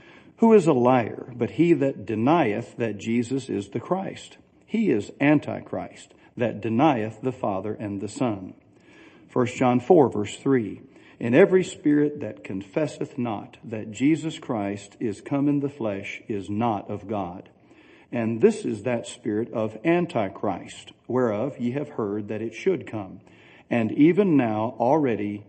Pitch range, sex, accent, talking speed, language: 105-135 Hz, male, American, 155 wpm, English